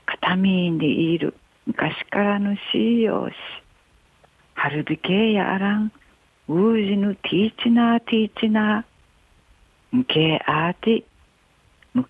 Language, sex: Japanese, female